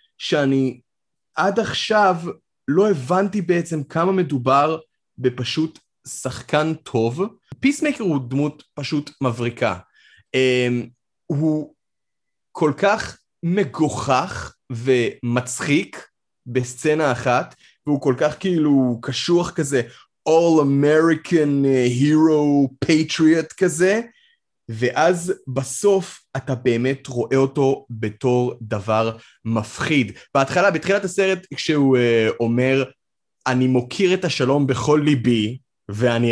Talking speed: 90 wpm